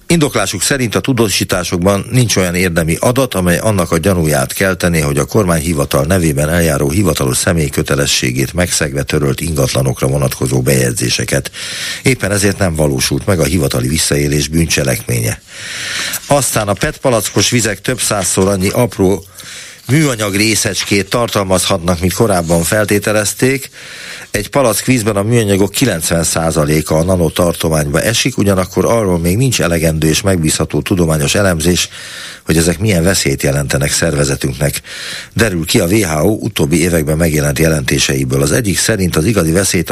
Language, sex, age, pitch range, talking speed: Hungarian, male, 50-69, 80-105 Hz, 130 wpm